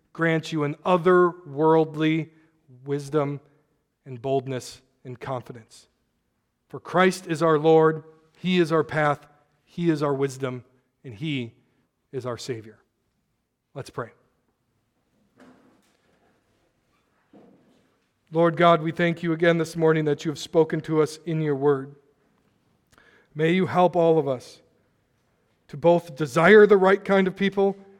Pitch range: 140-165 Hz